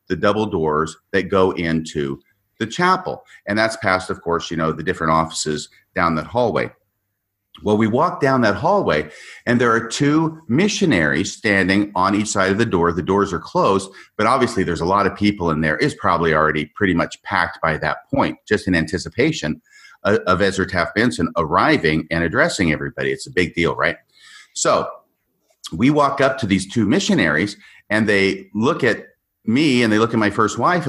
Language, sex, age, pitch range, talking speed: English, male, 50-69, 90-110 Hz, 190 wpm